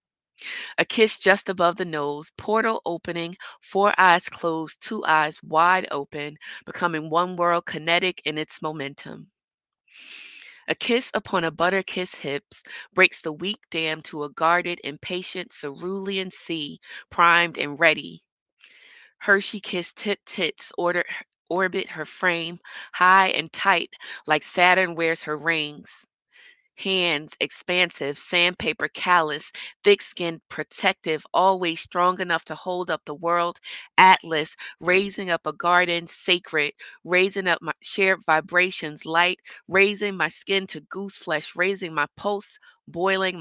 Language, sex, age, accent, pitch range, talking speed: English, female, 30-49, American, 155-190 Hz, 130 wpm